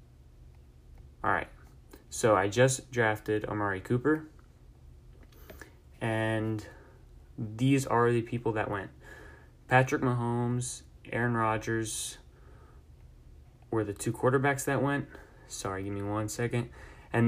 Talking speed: 105 wpm